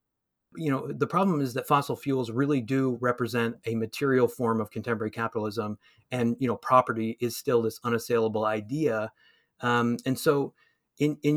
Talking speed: 165 wpm